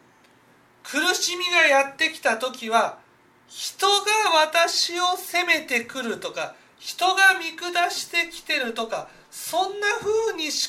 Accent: native